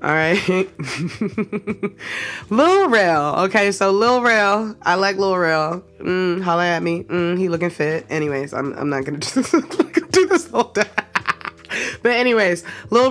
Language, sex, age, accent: English, female, 20-39, American